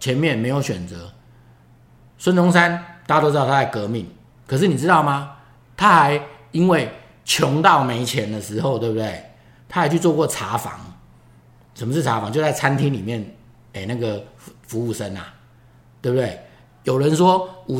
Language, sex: Chinese, male